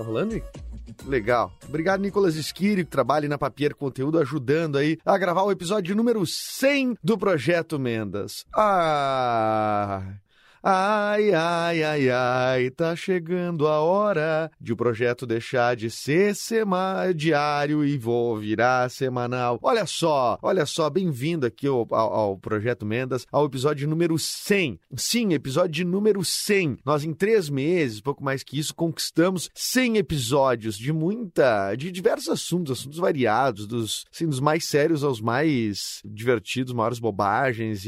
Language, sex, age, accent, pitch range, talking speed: Portuguese, male, 30-49, Brazilian, 120-165 Hz, 140 wpm